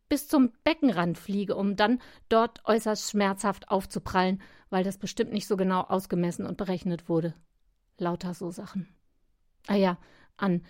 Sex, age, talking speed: female, 50-69, 145 wpm